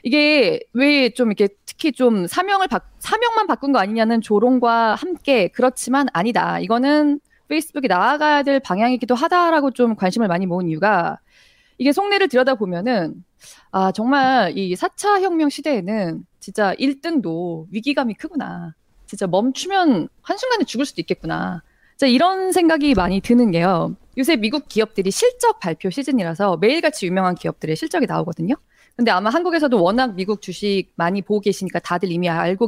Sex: female